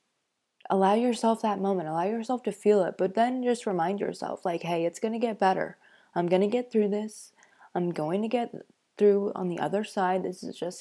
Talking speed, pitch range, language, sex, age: 215 wpm, 185-210 Hz, English, female, 20-39